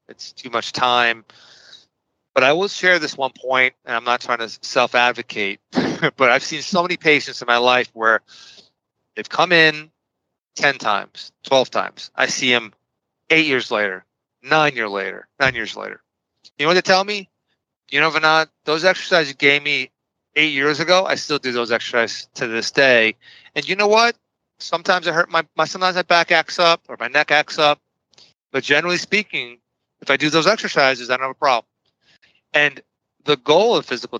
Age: 30-49